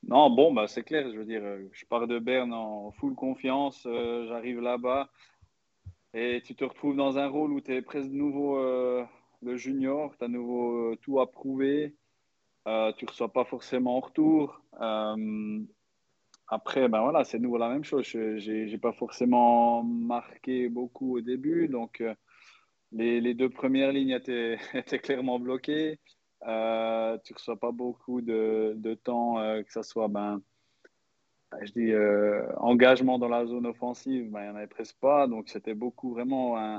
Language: French